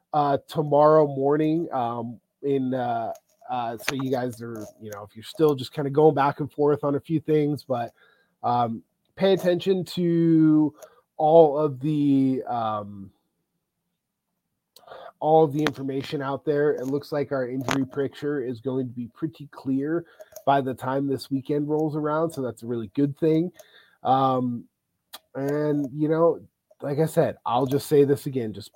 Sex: male